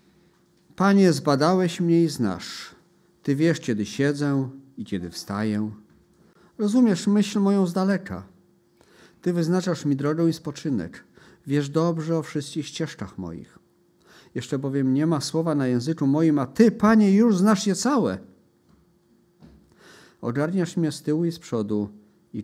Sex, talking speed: male, 140 wpm